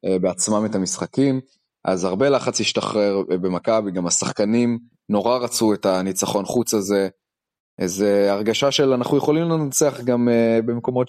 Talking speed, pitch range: 130 wpm, 100-120 Hz